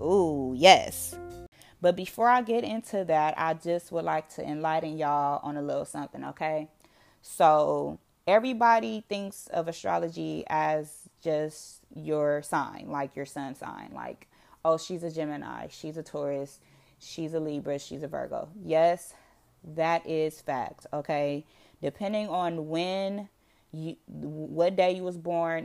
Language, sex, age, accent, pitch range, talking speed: English, female, 20-39, American, 150-180 Hz, 140 wpm